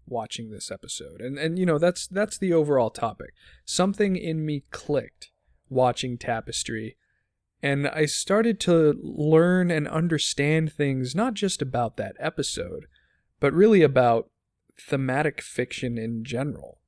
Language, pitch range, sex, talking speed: English, 115-155 Hz, male, 135 wpm